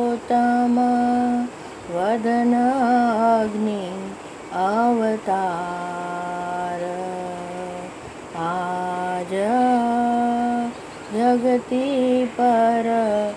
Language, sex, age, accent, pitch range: English, female, 20-39, Indian, 220-280 Hz